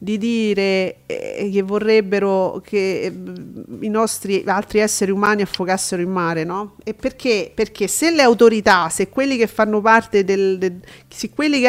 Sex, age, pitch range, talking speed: female, 40-59, 200-250 Hz, 155 wpm